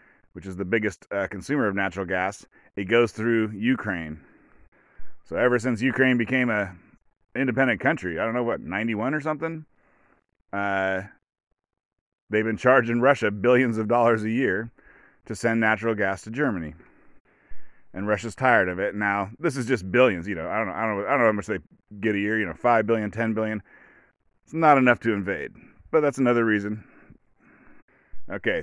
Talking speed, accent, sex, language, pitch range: 185 wpm, American, male, English, 100-125 Hz